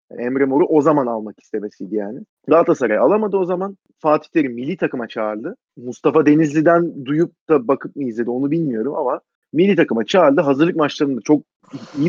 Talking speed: 170 wpm